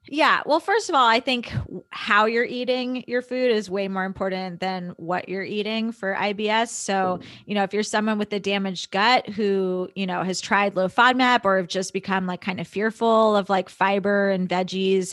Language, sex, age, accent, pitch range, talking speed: English, female, 20-39, American, 190-225 Hz, 205 wpm